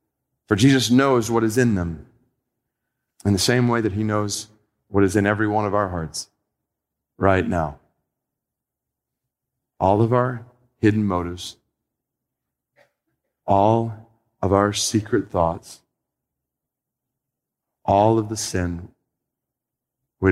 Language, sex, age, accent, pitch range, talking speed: English, male, 40-59, American, 95-120 Hz, 115 wpm